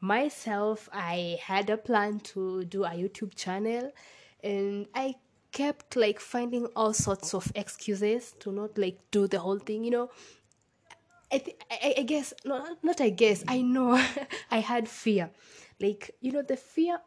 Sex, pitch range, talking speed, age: female, 205-265 Hz, 160 wpm, 20-39